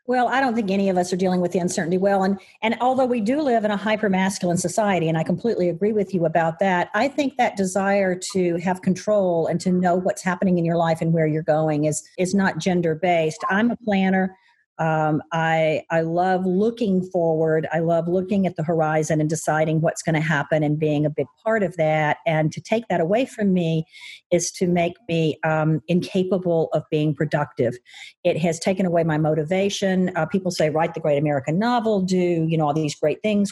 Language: English